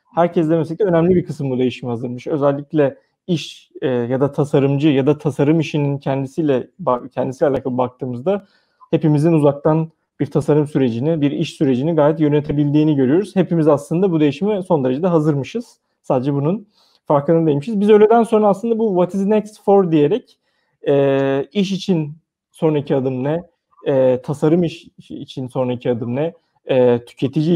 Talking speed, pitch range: 145 wpm, 135-170 Hz